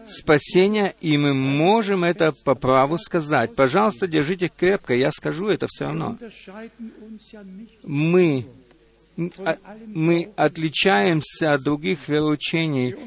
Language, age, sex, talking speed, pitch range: Russian, 50-69, male, 100 wpm, 150-200 Hz